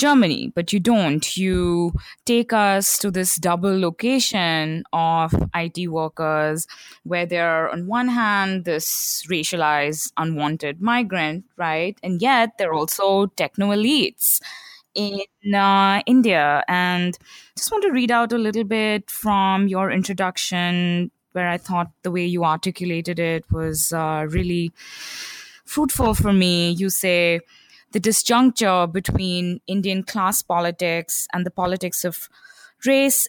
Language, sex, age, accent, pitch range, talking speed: English, female, 20-39, Indian, 170-215 Hz, 130 wpm